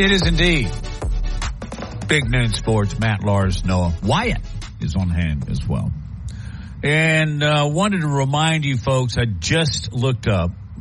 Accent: American